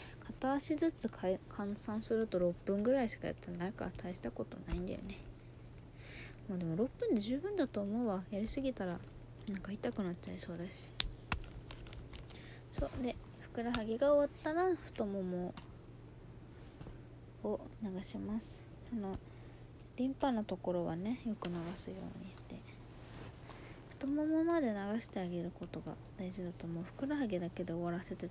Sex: female